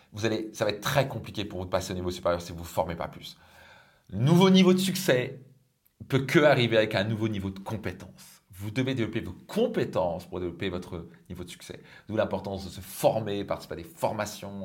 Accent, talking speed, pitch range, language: French, 220 wpm, 95-120 Hz, French